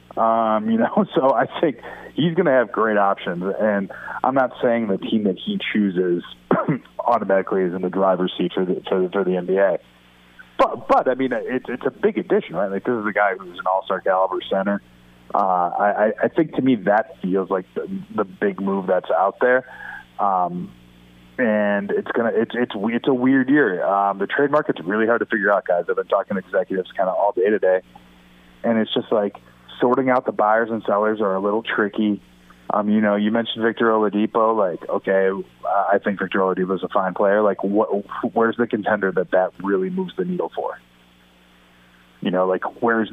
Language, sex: English, male